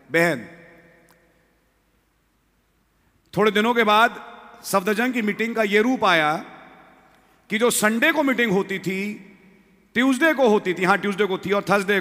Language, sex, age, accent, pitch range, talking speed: English, male, 40-59, Indian, 135-195 Hz, 145 wpm